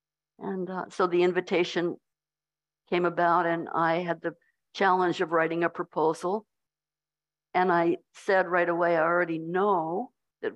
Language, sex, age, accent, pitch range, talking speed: English, female, 60-79, American, 170-195 Hz, 140 wpm